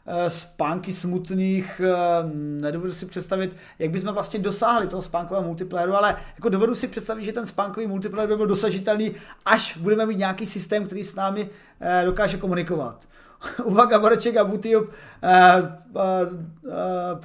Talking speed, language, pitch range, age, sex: 130 wpm, Czech, 180-220 Hz, 30-49, male